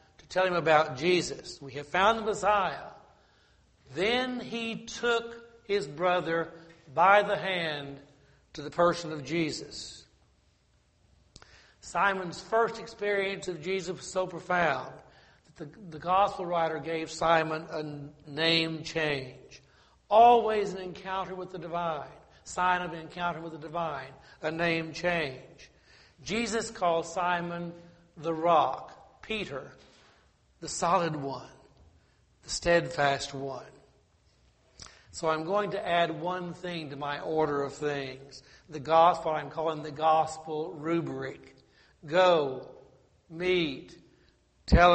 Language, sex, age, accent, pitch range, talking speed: English, male, 60-79, American, 150-185 Hz, 120 wpm